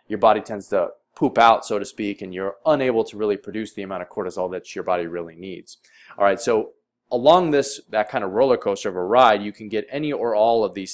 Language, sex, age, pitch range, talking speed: English, male, 20-39, 105-120 Hz, 245 wpm